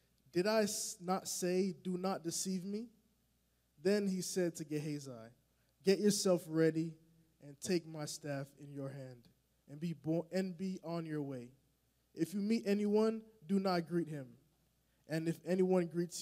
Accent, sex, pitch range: American, male, 140-180 Hz